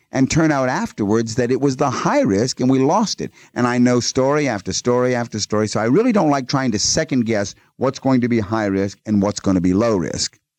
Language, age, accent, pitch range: English, 50-69, American, 95-125 Hz